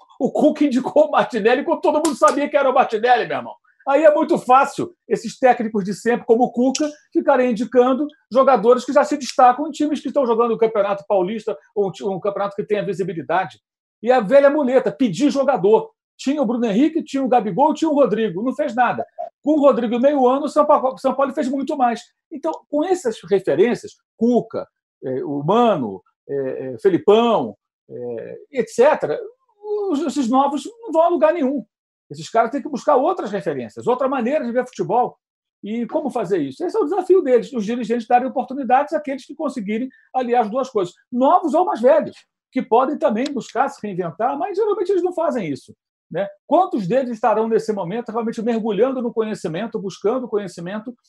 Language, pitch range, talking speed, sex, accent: Portuguese, 225-300 Hz, 185 wpm, male, Brazilian